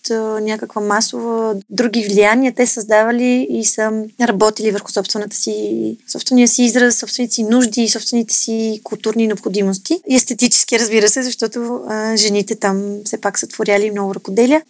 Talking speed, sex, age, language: 150 wpm, female, 20-39, Bulgarian